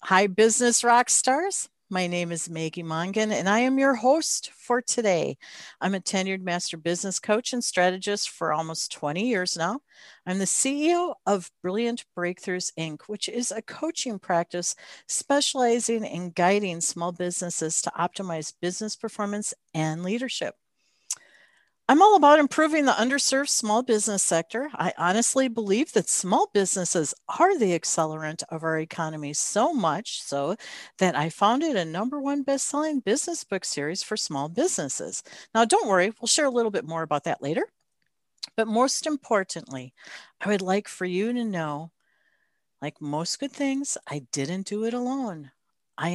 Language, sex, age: English, female, 50-69